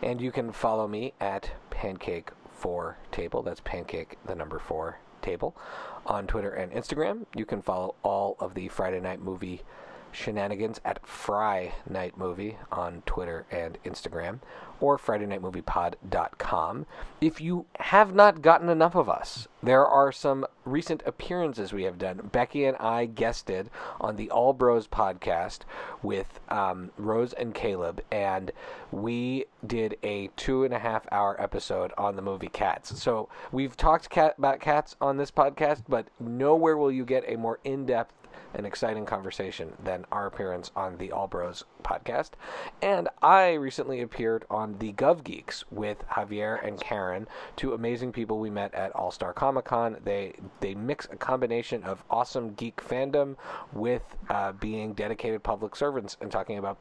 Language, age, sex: English, 40-59, male